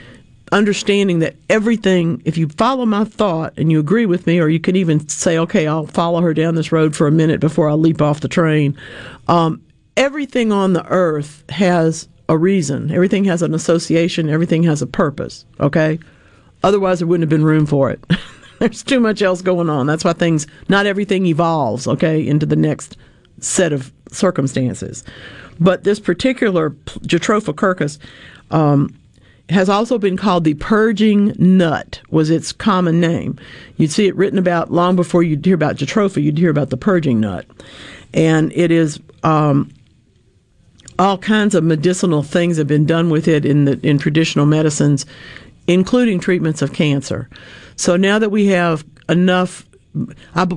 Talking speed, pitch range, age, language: 165 wpm, 150-185 Hz, 50-69, English